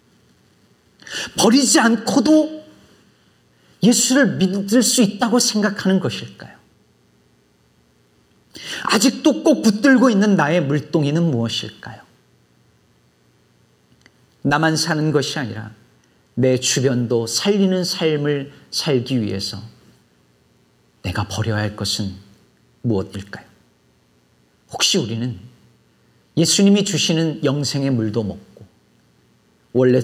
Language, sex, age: Korean, male, 40-59